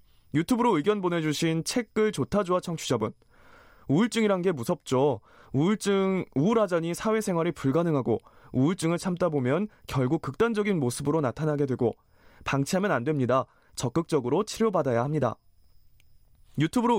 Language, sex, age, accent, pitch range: Korean, male, 20-39, native, 135-195 Hz